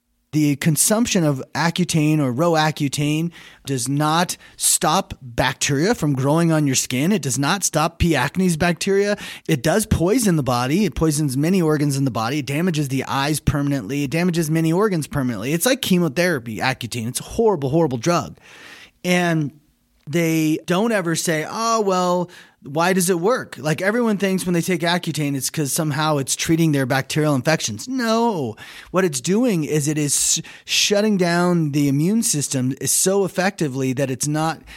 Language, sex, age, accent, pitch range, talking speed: English, male, 30-49, American, 135-175 Hz, 165 wpm